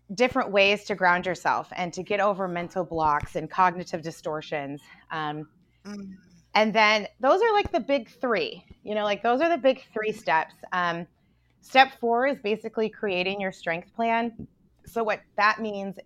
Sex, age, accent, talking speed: female, 20-39, American, 170 wpm